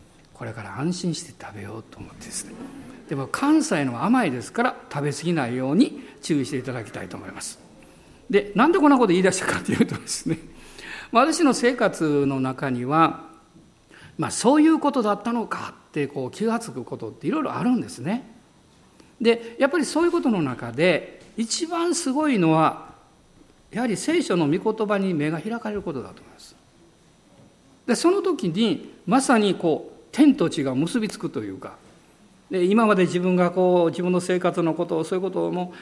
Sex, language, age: male, Japanese, 50-69